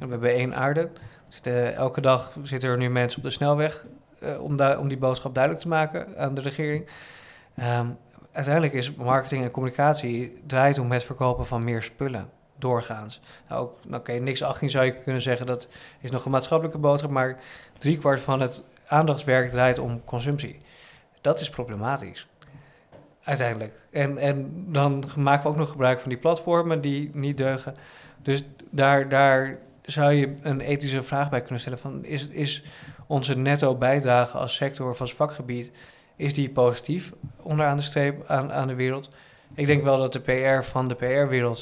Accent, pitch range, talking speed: Dutch, 125-145 Hz, 170 wpm